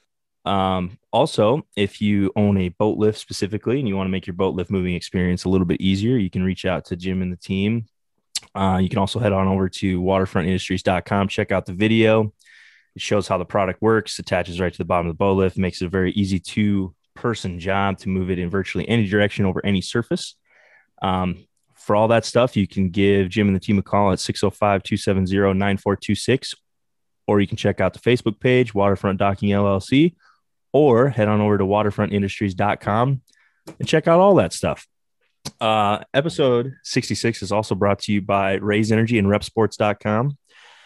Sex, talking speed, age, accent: male, 190 wpm, 20-39, American